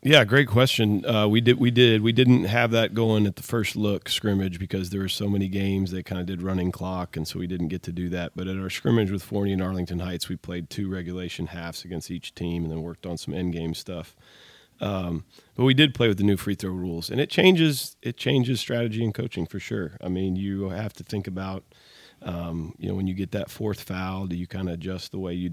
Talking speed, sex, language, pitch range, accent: 255 wpm, male, English, 90-105 Hz, American